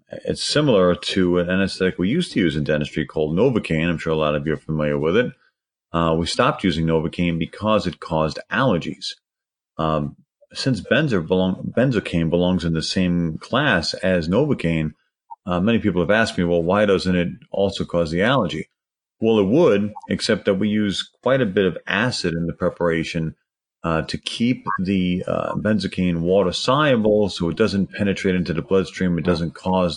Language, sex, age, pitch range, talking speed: English, male, 40-59, 85-100 Hz, 175 wpm